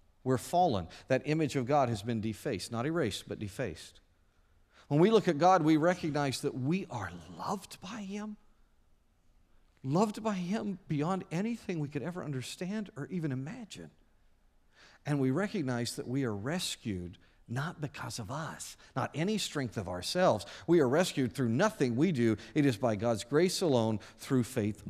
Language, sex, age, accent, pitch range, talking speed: English, male, 50-69, American, 110-175 Hz, 165 wpm